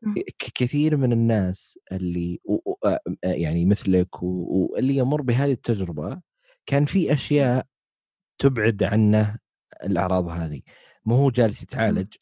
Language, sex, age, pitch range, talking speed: Arabic, male, 20-39, 100-135 Hz, 105 wpm